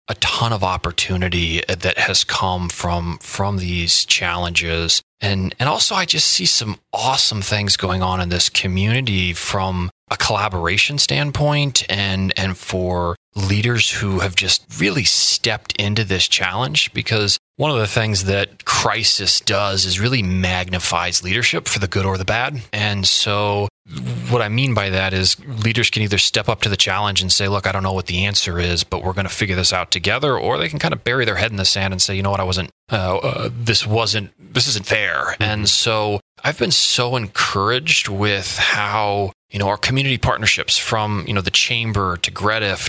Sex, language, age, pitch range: male, English, 30-49, 95-115 Hz